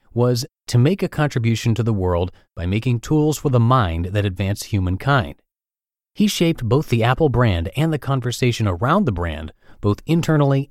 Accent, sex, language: American, male, English